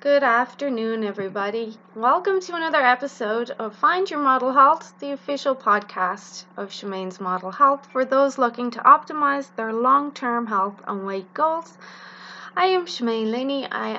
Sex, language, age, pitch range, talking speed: female, English, 20-39, 215-275 Hz, 150 wpm